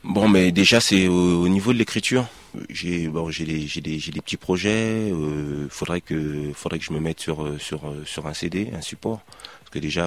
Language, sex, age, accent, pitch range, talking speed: French, male, 30-49, French, 75-90 Hz, 215 wpm